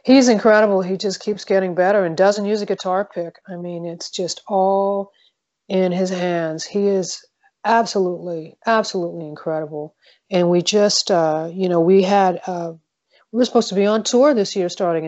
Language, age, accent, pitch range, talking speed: English, 40-59, American, 160-190 Hz, 180 wpm